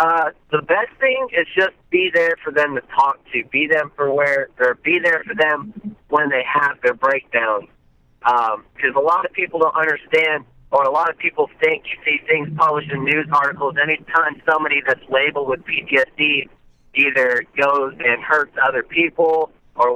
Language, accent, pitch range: English, American, 130-170 Hz